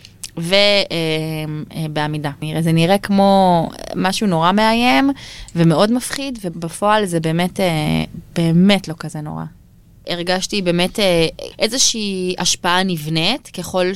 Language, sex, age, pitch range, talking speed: Hebrew, female, 20-39, 160-200 Hz, 95 wpm